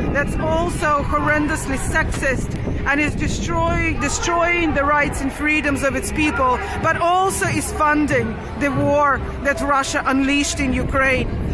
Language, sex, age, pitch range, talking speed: English, female, 40-59, 280-330 Hz, 135 wpm